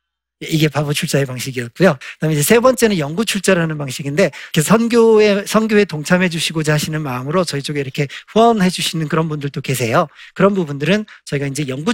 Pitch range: 145-200 Hz